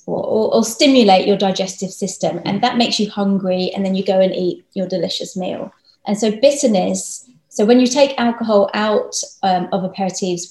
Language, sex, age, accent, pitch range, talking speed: English, female, 20-39, British, 185-235 Hz, 185 wpm